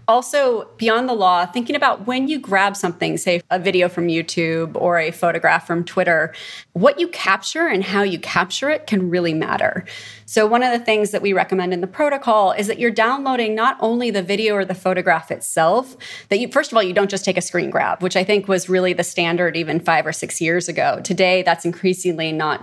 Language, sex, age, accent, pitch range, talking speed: English, female, 30-49, American, 175-220 Hz, 220 wpm